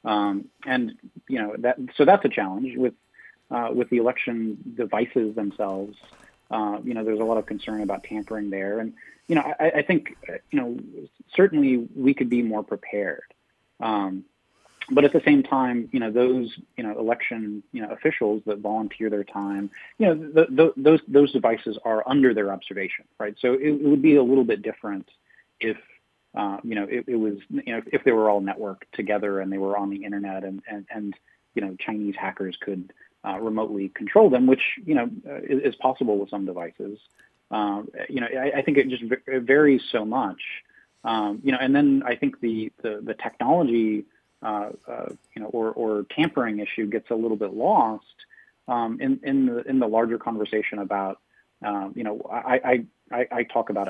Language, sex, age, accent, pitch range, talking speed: English, male, 30-49, American, 105-130 Hz, 195 wpm